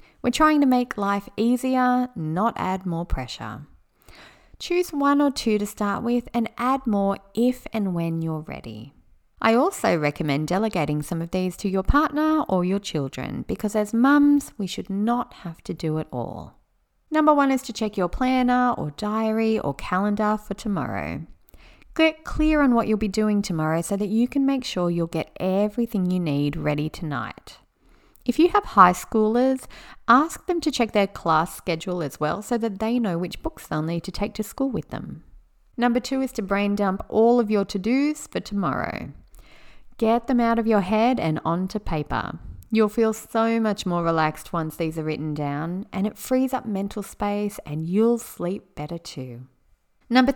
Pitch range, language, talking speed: 170-245 Hz, English, 185 wpm